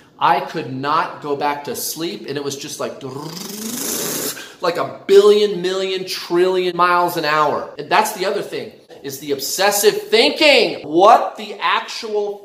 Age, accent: 30-49, American